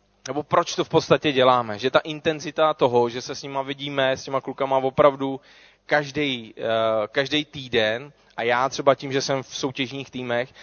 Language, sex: Czech, male